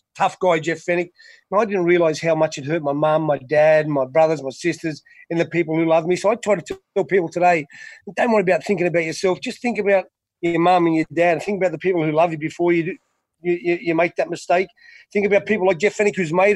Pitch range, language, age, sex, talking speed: 165-195 Hz, English, 30-49, male, 245 wpm